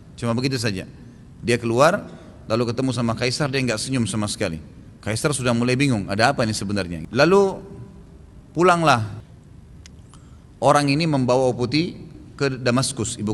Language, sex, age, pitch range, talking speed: Indonesian, male, 30-49, 115-165 Hz, 140 wpm